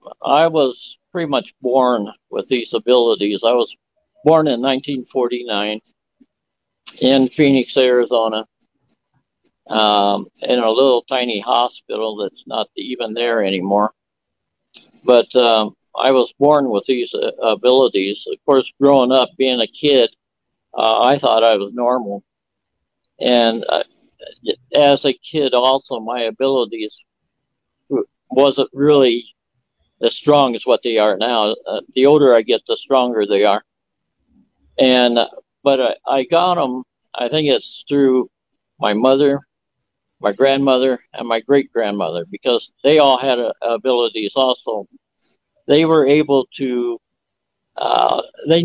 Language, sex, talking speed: English, male, 130 wpm